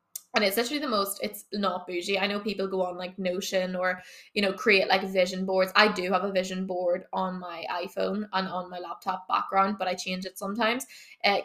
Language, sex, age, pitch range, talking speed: English, female, 20-39, 190-215 Hz, 220 wpm